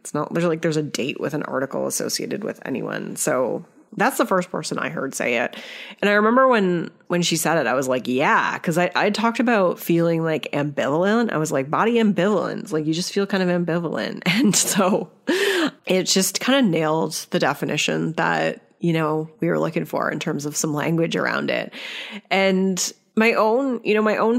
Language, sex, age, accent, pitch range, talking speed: English, female, 30-49, American, 160-200 Hz, 205 wpm